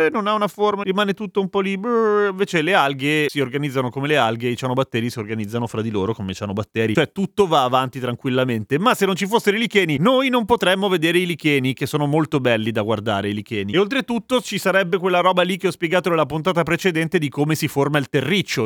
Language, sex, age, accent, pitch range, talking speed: Italian, male, 30-49, native, 130-190 Hz, 230 wpm